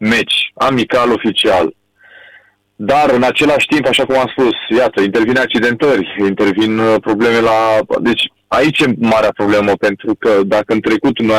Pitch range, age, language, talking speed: 115-160 Hz, 20-39, Romanian, 155 wpm